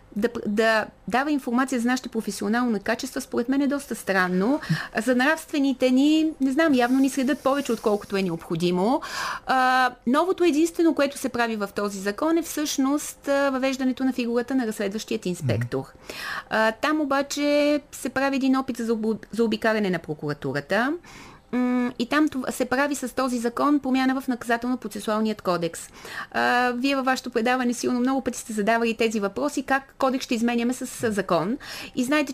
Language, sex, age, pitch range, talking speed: Bulgarian, female, 30-49, 225-275 Hz, 160 wpm